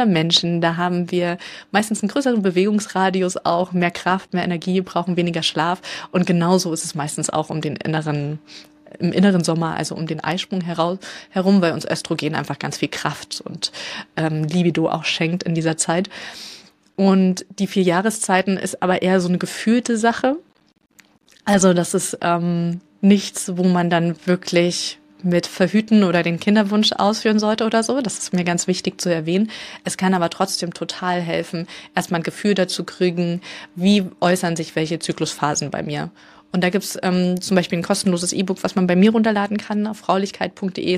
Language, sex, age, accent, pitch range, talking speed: German, female, 20-39, German, 170-195 Hz, 175 wpm